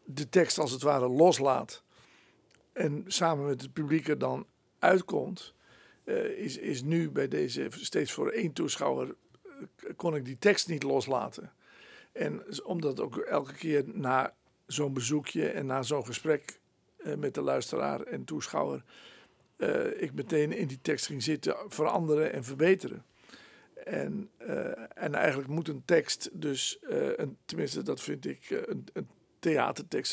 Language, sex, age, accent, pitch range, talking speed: Dutch, male, 60-79, Dutch, 145-205 Hz, 140 wpm